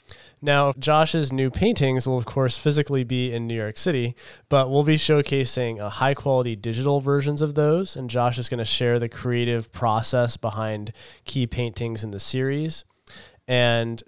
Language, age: English, 20-39